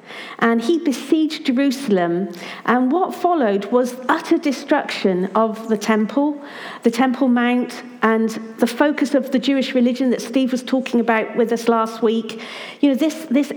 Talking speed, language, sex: 160 wpm, English, female